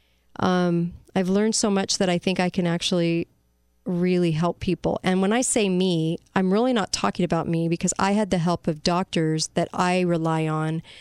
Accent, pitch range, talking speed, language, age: American, 170-190 Hz, 195 wpm, English, 40-59